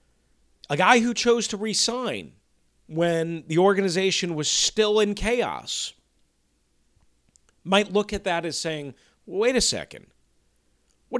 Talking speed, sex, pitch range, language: 125 wpm, male, 135-195 Hz, English